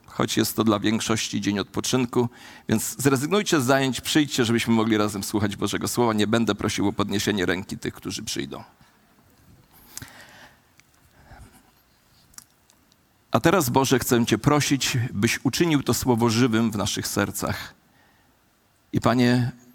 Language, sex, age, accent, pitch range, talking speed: Polish, male, 40-59, native, 110-150 Hz, 130 wpm